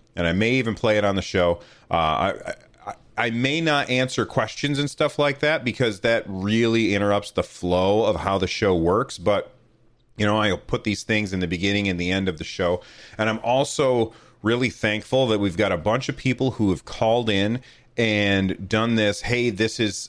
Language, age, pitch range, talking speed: English, 30-49, 95-120 Hz, 210 wpm